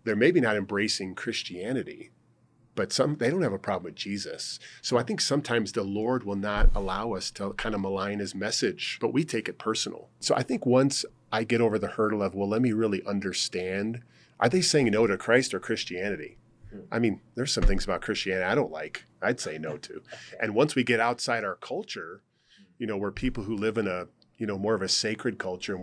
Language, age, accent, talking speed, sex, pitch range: English, 40-59, American, 220 wpm, male, 95-115 Hz